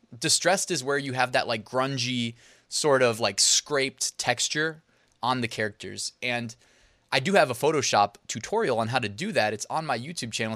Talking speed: 190 wpm